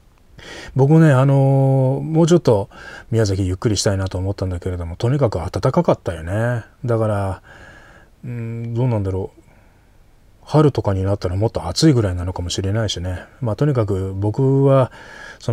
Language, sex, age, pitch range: Japanese, male, 20-39, 95-115 Hz